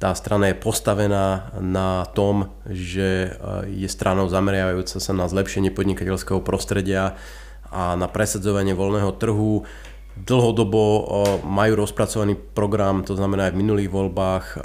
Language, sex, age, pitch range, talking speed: Slovak, male, 30-49, 95-115 Hz, 125 wpm